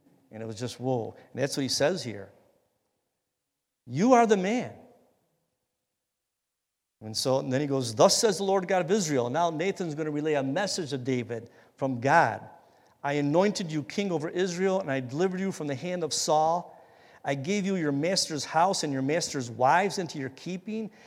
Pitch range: 125-190 Hz